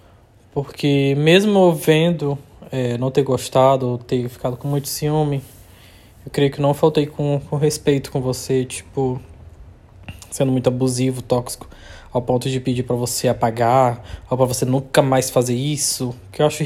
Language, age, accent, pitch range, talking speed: Portuguese, 20-39, Brazilian, 120-155 Hz, 160 wpm